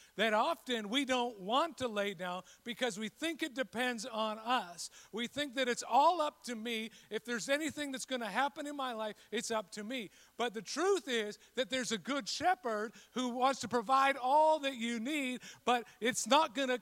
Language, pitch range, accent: English, 180-255 Hz, American